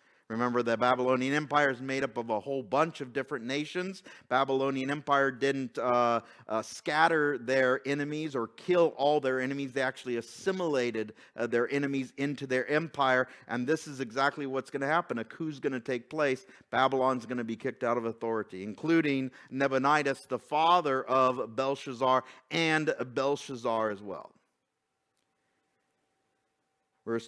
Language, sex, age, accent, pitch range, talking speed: English, male, 50-69, American, 130-175 Hz, 150 wpm